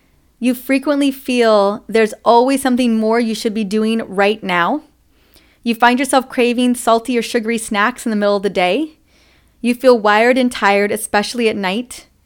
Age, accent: 30-49, American